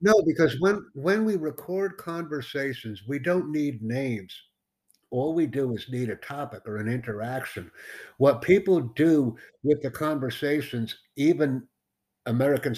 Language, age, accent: English, 60-79, American